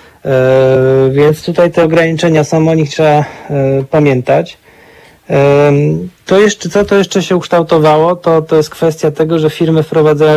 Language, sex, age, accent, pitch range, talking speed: Polish, male, 40-59, native, 135-150 Hz, 125 wpm